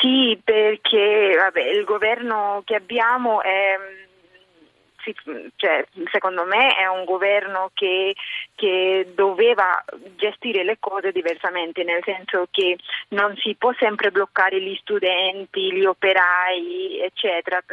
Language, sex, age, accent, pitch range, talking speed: Italian, female, 20-39, native, 185-230 Hz, 105 wpm